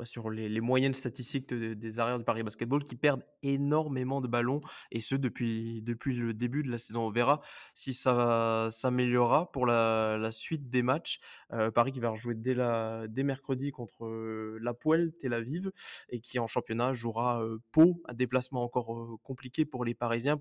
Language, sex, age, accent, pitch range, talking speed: French, male, 20-39, French, 120-140 Hz, 195 wpm